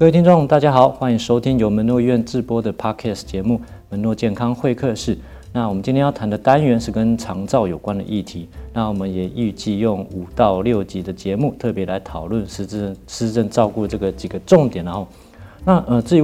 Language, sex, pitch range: Chinese, male, 95-120 Hz